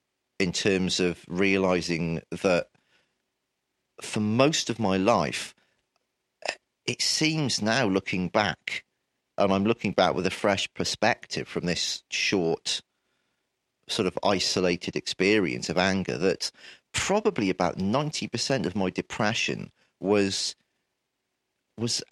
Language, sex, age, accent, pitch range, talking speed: English, male, 40-59, British, 95-150 Hz, 110 wpm